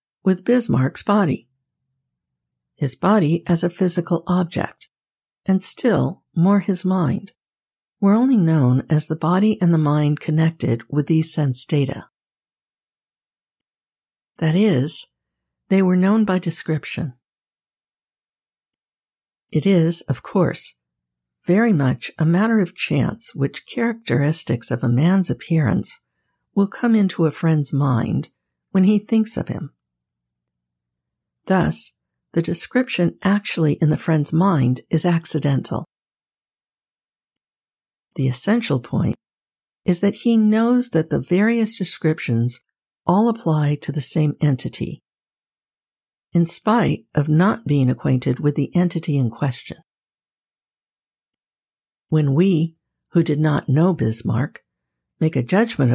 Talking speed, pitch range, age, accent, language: 120 wpm, 130-190 Hz, 60-79, American, English